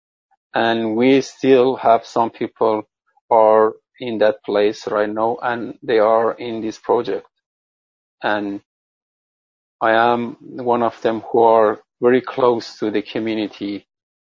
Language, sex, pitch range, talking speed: English, male, 105-120 Hz, 130 wpm